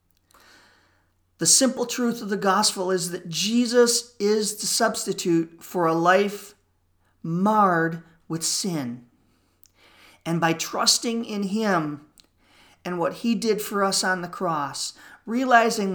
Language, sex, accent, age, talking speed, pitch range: English, male, American, 40-59, 125 wpm, 165-215 Hz